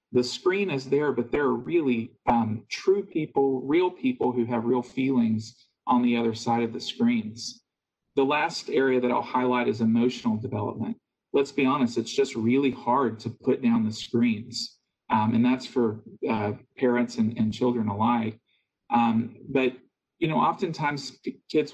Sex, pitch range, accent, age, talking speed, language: male, 120-150 Hz, American, 40-59, 170 wpm, English